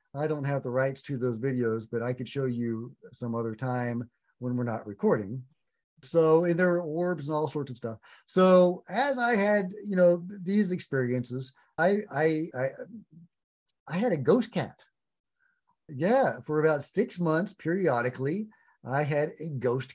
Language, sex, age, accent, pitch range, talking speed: English, male, 50-69, American, 135-180 Hz, 165 wpm